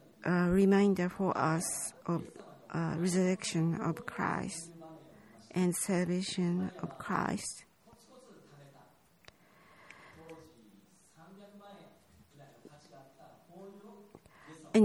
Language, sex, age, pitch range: Japanese, female, 50-69, 170-195 Hz